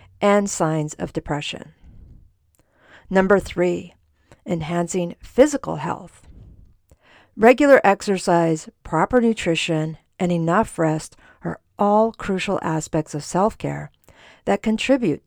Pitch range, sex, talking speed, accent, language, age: 165-225 Hz, female, 95 wpm, American, English, 50-69